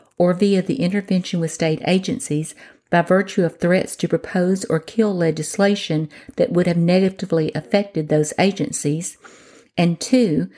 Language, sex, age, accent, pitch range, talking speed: English, female, 50-69, American, 165-205 Hz, 140 wpm